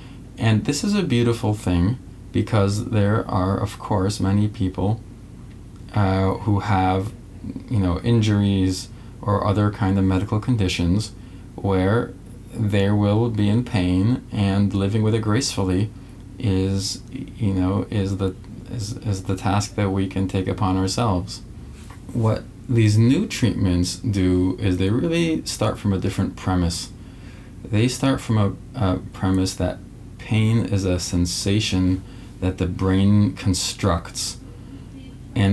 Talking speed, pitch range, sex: 130 wpm, 95-115 Hz, male